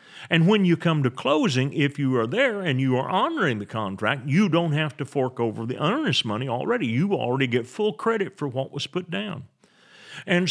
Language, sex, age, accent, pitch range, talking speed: English, male, 40-59, American, 105-160 Hz, 210 wpm